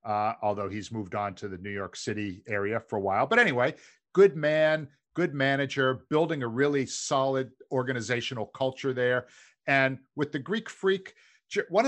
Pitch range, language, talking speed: 120-165 Hz, English, 165 wpm